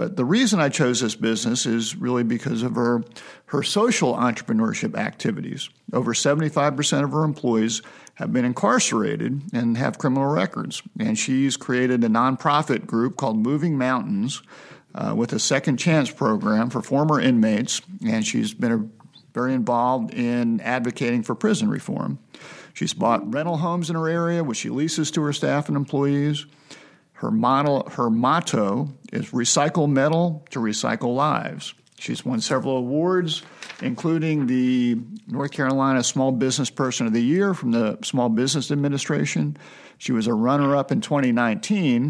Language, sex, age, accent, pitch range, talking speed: English, male, 50-69, American, 120-160 Hz, 150 wpm